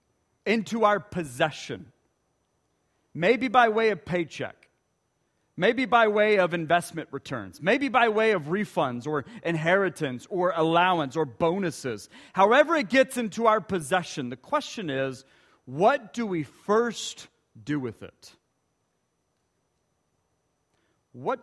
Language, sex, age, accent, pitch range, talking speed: English, male, 40-59, American, 145-210 Hz, 120 wpm